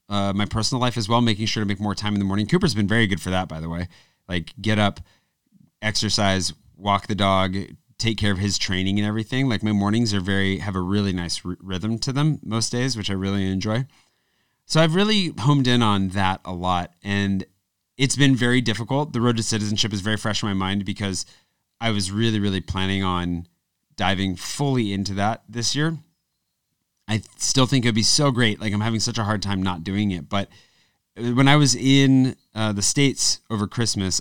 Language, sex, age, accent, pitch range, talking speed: English, male, 30-49, American, 95-120 Hz, 210 wpm